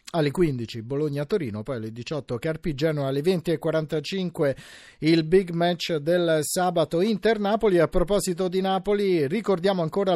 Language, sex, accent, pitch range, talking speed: Italian, male, native, 155-180 Hz, 125 wpm